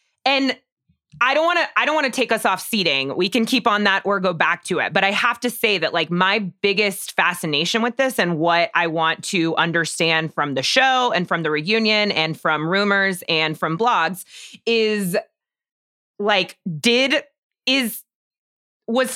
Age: 20-39